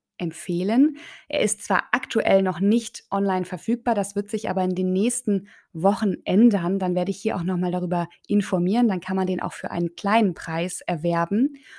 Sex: female